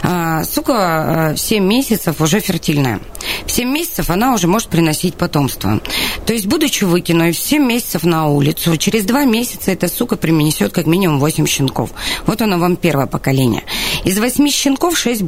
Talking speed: 170 wpm